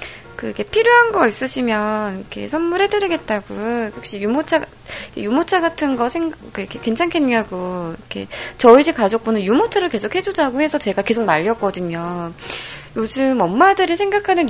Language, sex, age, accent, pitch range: Korean, female, 20-39, native, 200-295 Hz